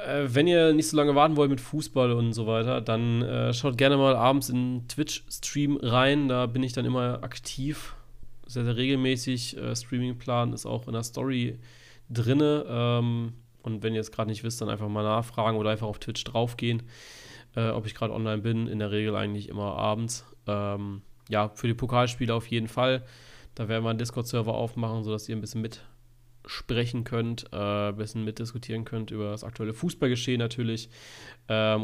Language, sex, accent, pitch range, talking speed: German, male, German, 110-125 Hz, 185 wpm